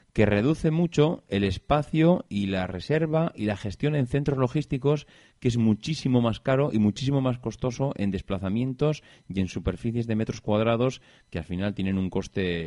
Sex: male